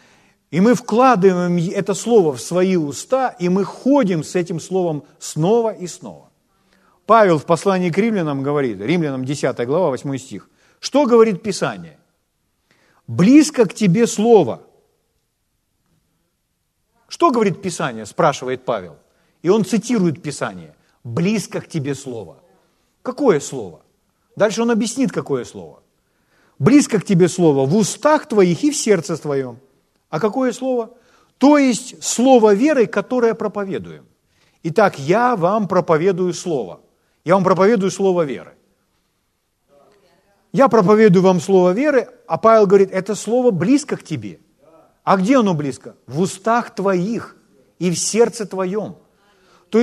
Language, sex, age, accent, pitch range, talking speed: Ukrainian, male, 40-59, native, 175-235 Hz, 130 wpm